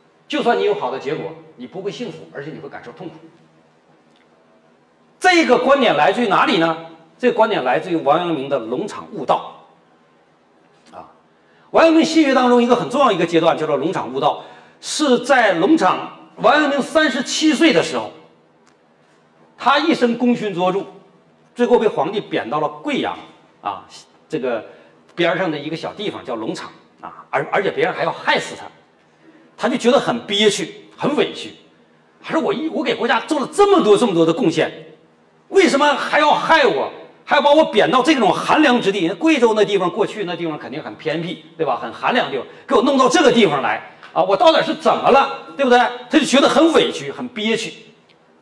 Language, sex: Chinese, male